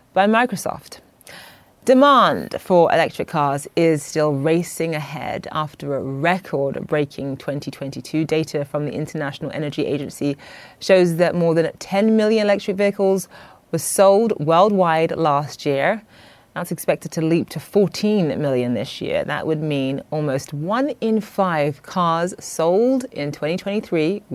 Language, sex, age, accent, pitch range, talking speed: English, female, 30-49, British, 150-185 Hz, 130 wpm